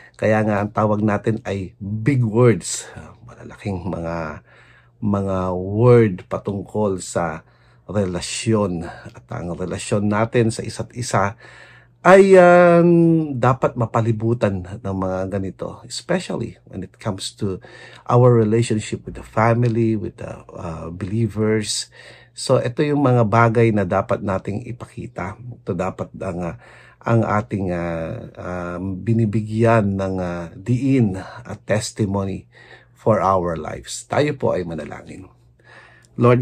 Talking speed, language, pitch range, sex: 120 wpm, English, 95-120 Hz, male